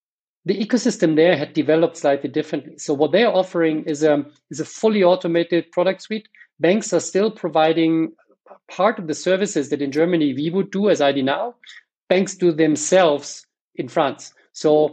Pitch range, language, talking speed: 145-175 Hz, English, 175 wpm